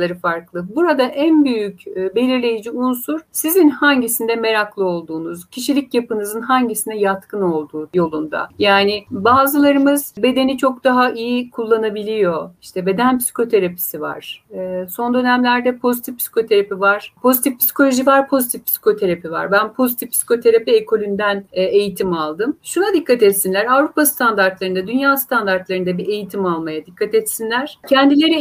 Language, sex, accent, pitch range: Turkish, female, native, 195-270 Hz